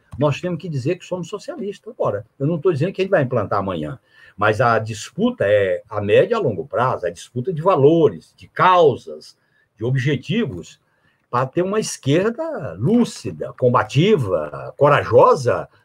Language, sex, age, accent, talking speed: Portuguese, male, 60-79, Brazilian, 165 wpm